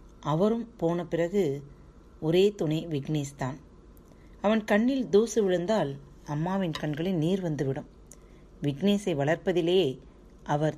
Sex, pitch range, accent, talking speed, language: female, 150-195 Hz, native, 95 wpm, Tamil